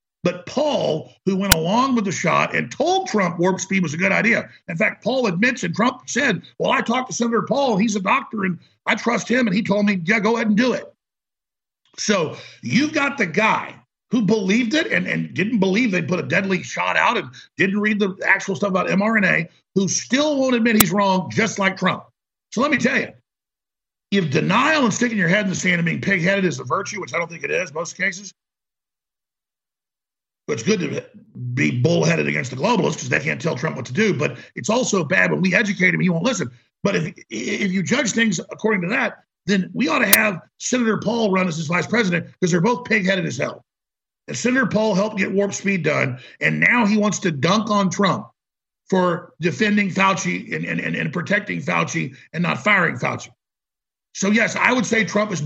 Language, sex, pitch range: English, male, 180-220 Hz